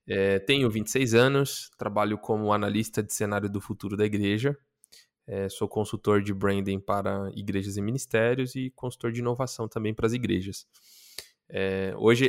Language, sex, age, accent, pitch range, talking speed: Portuguese, male, 10-29, Brazilian, 105-120 Hz, 140 wpm